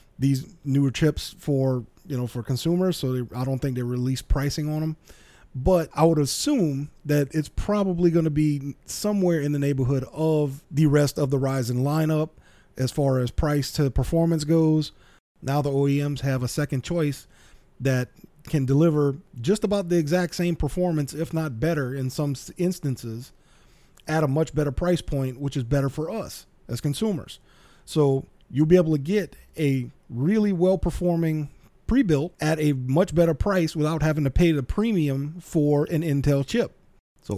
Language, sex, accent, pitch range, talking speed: English, male, American, 135-165 Hz, 170 wpm